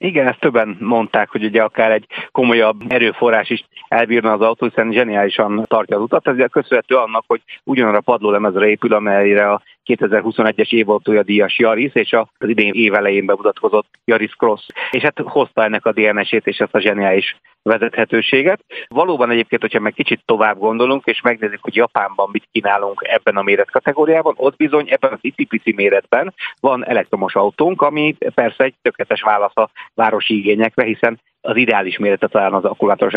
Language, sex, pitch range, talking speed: Hungarian, male, 105-120 Hz, 165 wpm